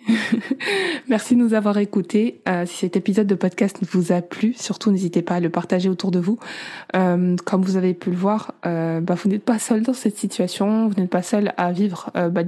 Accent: French